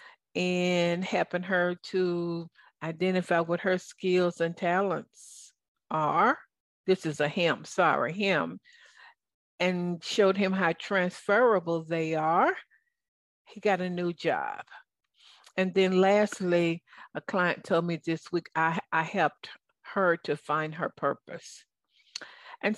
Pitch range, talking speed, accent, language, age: 165-200 Hz, 125 wpm, American, English, 50-69